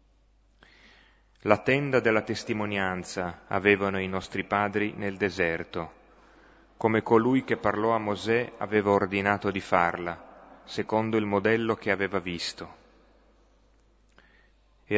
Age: 30-49